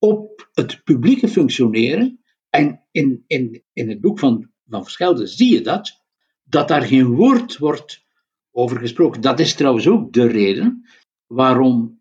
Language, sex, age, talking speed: Dutch, male, 60-79, 150 wpm